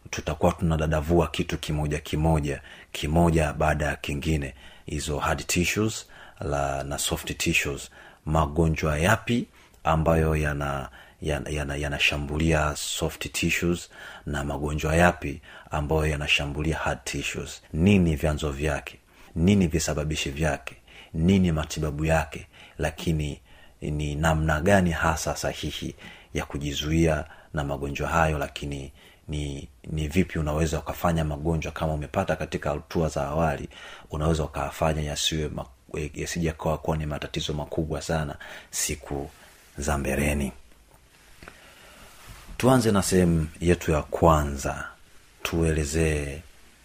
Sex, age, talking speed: male, 30-49, 110 wpm